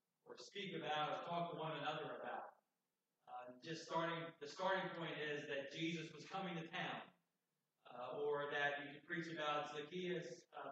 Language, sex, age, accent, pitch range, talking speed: English, male, 40-59, American, 145-170 Hz, 170 wpm